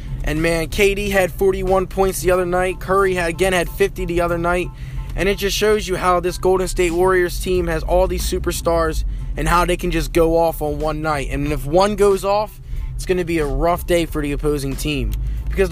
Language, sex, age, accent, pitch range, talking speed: English, male, 20-39, American, 155-185 Hz, 220 wpm